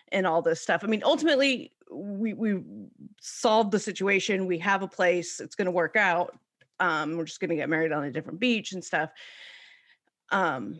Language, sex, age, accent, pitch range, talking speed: English, female, 30-49, American, 170-225 Hz, 195 wpm